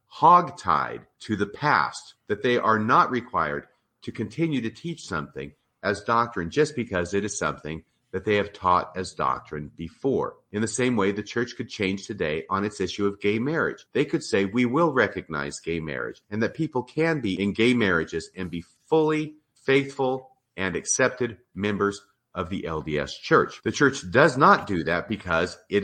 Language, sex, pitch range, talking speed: English, male, 90-125 Hz, 180 wpm